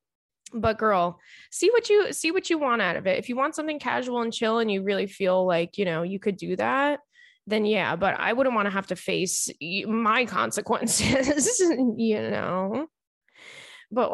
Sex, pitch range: female, 195-250 Hz